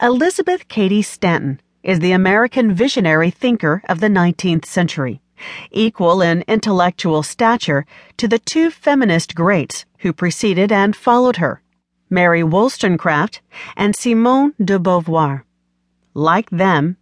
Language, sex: English, female